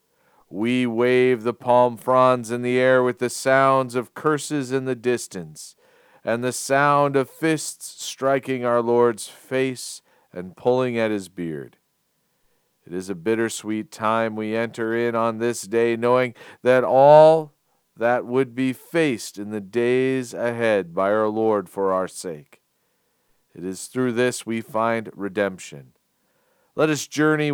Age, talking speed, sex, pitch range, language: 40-59, 150 wpm, male, 105-125 Hz, English